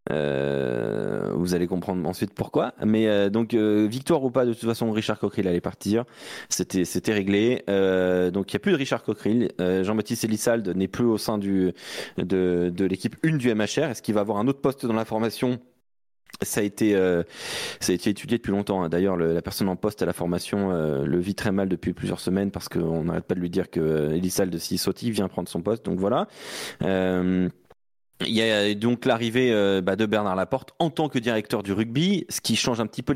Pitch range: 90-115 Hz